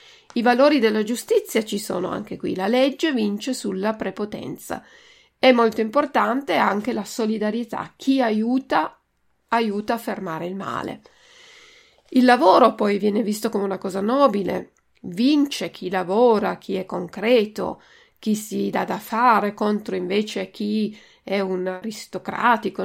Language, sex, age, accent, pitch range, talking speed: Italian, female, 40-59, native, 195-240 Hz, 135 wpm